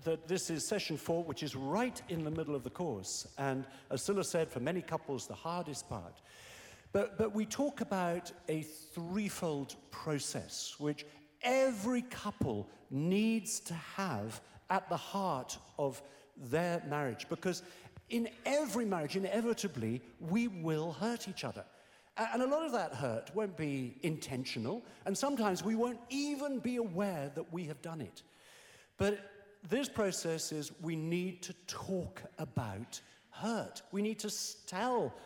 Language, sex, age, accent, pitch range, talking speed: English, male, 50-69, British, 145-205 Hz, 150 wpm